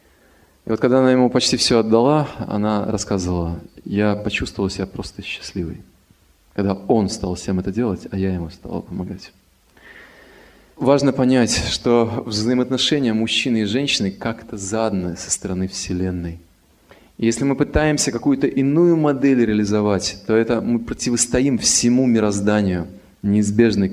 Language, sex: Russian, male